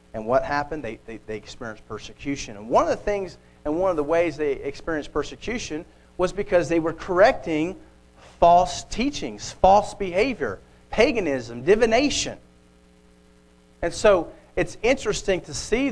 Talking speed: 145 wpm